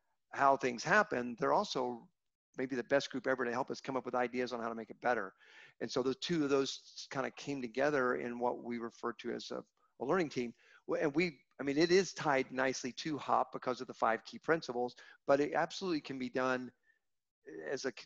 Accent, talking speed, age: American, 220 wpm, 50-69